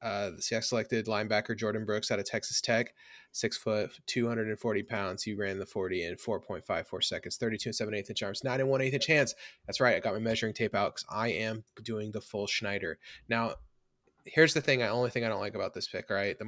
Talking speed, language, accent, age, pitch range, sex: 235 wpm, English, American, 20-39, 100-115 Hz, male